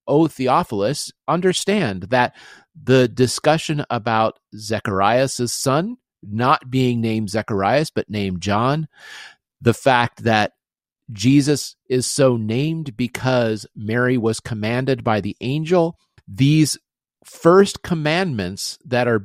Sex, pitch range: male, 110-135 Hz